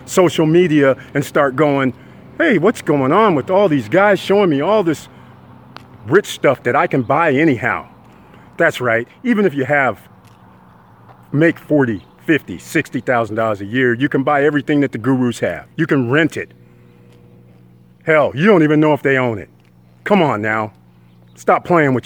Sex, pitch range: male, 105-145 Hz